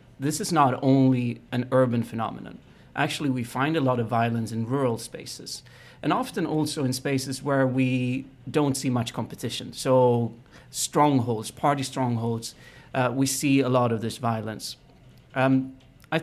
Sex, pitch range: male, 115-135 Hz